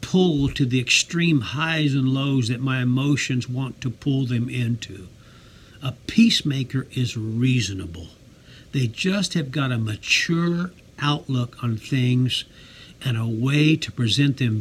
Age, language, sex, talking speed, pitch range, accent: 60-79, English, male, 140 wpm, 115-140 Hz, American